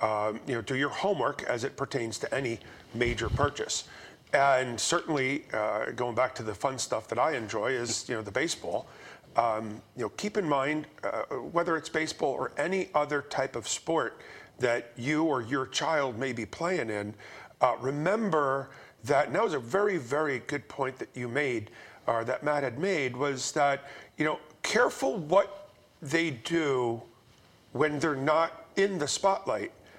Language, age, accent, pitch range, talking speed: English, 40-59, American, 130-165 Hz, 180 wpm